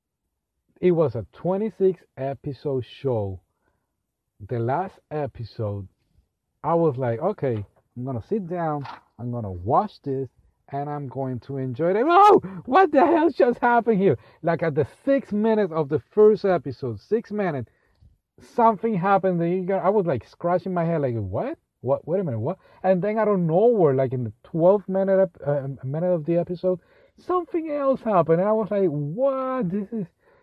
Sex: male